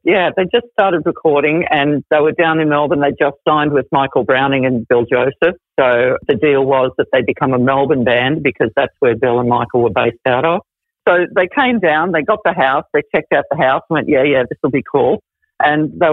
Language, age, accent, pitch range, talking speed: English, 50-69, Australian, 140-190 Hz, 235 wpm